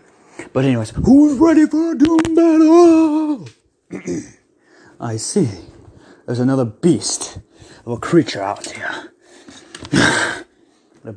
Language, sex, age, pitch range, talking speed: English, male, 30-49, 115-180 Hz, 100 wpm